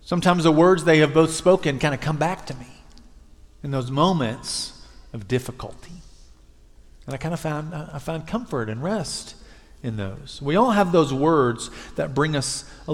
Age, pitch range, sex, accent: 40-59, 100-145 Hz, male, American